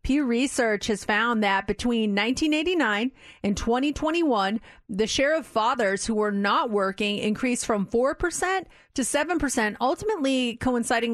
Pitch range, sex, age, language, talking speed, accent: 210-250 Hz, female, 30-49, English, 130 wpm, American